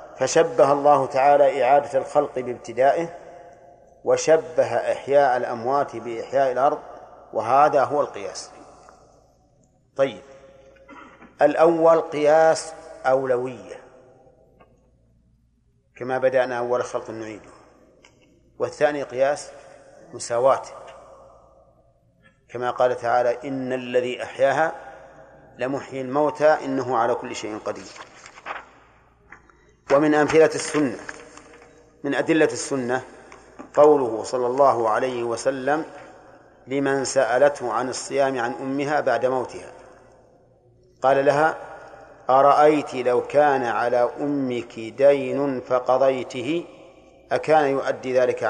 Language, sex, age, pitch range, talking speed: Arabic, male, 50-69, 125-150 Hz, 85 wpm